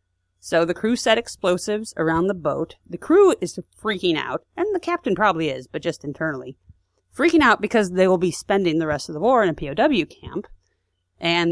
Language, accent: English, American